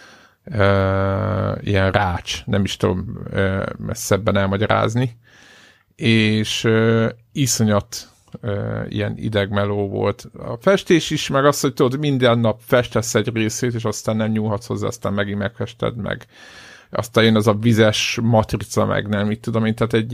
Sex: male